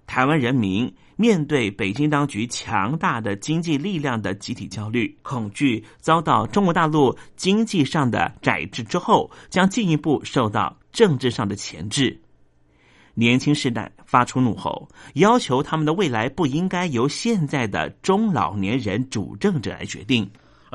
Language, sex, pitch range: Chinese, male, 110-160 Hz